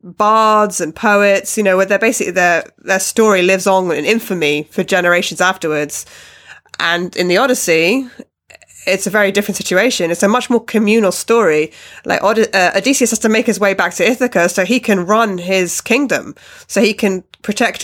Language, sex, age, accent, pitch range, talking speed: English, female, 20-39, British, 185-220 Hz, 180 wpm